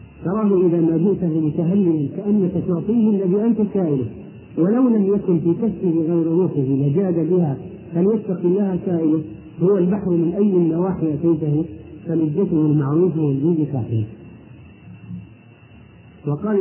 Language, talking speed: Arabic, 120 wpm